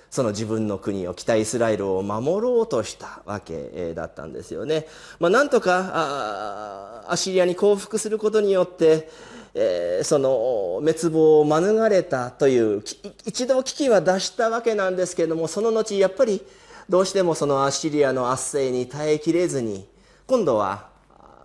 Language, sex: Japanese, male